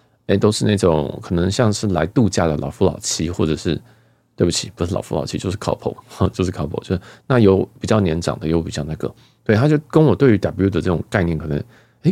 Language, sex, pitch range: Chinese, male, 85-115 Hz